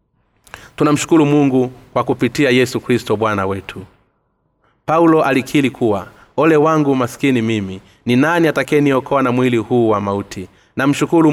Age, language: 30-49, Swahili